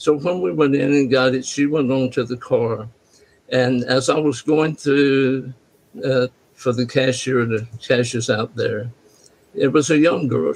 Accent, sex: American, male